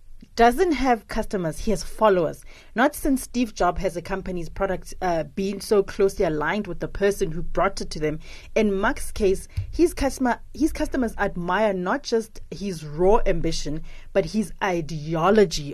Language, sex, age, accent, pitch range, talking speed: English, female, 30-49, South African, 170-225 Hz, 165 wpm